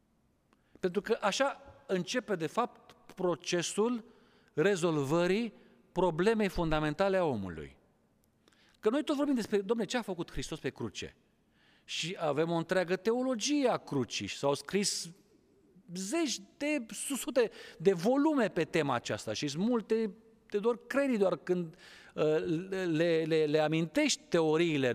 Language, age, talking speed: Romanian, 40-59, 135 wpm